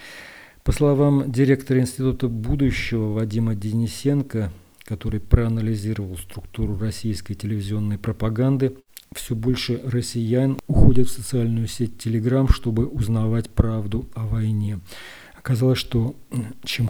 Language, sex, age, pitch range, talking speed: Russian, male, 40-59, 105-120 Hz, 105 wpm